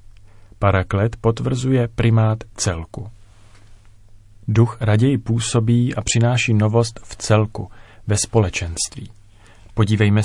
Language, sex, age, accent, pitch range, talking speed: Czech, male, 40-59, native, 100-115 Hz, 90 wpm